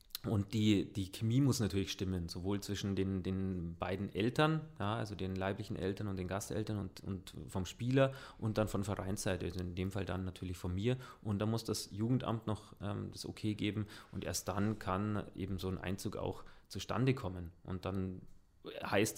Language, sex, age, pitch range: German, male, 30-49, 95-115 Hz